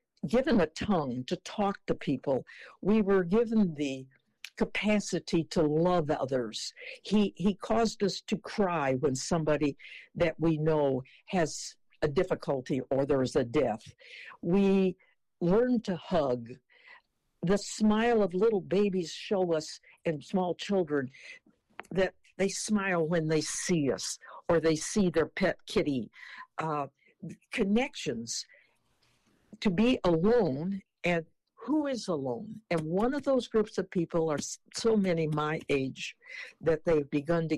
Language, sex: English, female